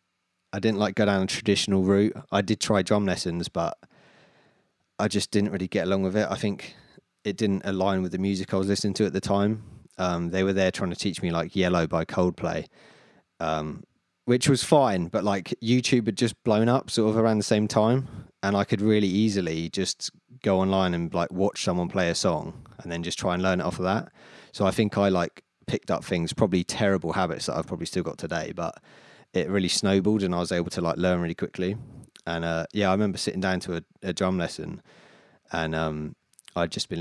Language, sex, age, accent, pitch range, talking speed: English, male, 30-49, British, 90-105 Hz, 225 wpm